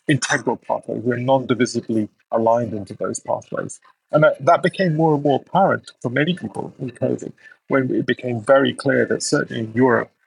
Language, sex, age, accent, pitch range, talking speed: English, male, 30-49, British, 120-145 Hz, 180 wpm